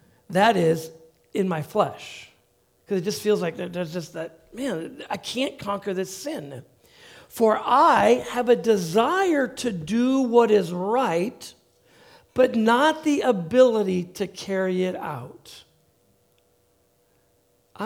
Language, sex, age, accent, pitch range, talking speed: English, male, 50-69, American, 150-195 Hz, 130 wpm